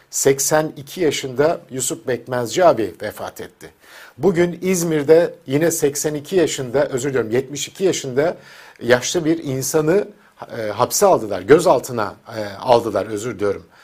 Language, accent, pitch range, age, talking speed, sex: Turkish, native, 130-180 Hz, 50-69, 115 wpm, male